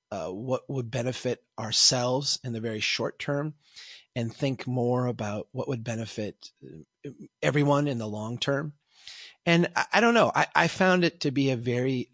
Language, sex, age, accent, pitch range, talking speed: English, male, 30-49, American, 115-145 Hz, 175 wpm